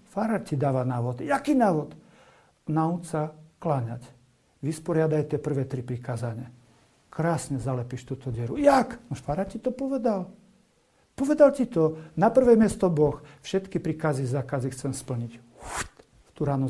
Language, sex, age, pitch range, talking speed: Slovak, male, 50-69, 135-185 Hz, 130 wpm